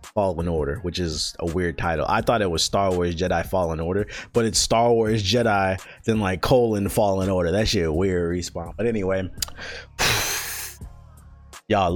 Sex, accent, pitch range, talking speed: male, American, 90-125 Hz, 165 wpm